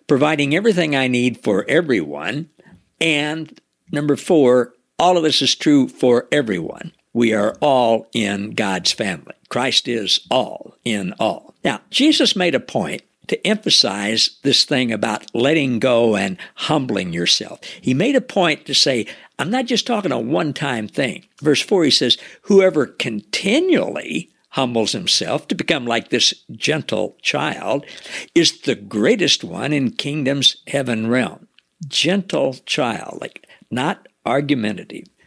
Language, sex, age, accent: English, male, 60-79, American